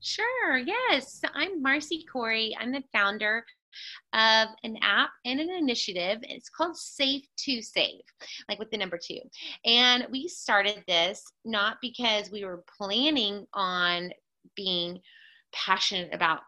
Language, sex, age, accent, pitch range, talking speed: English, female, 30-49, American, 195-265 Hz, 135 wpm